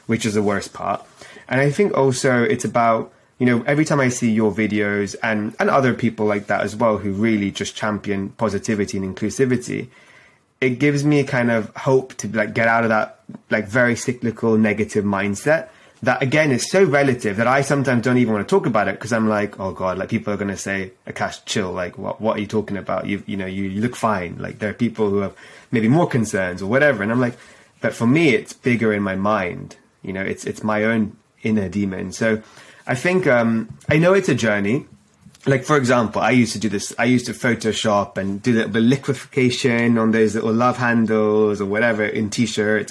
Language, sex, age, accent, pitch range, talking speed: English, male, 20-39, British, 105-125 Hz, 220 wpm